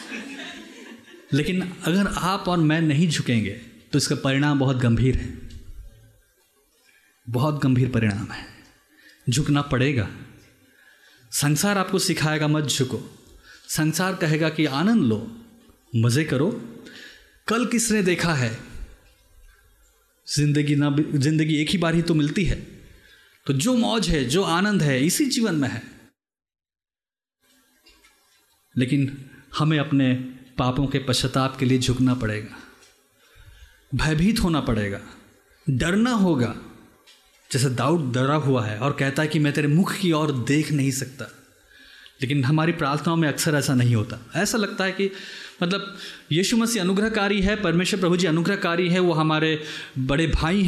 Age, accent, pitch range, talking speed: 30-49, native, 130-190 Hz, 135 wpm